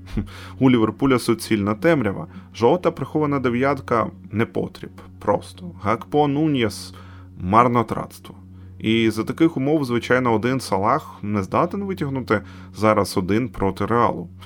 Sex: male